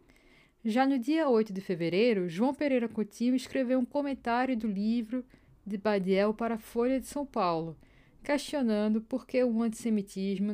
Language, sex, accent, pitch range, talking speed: Portuguese, female, Brazilian, 195-245 Hz, 155 wpm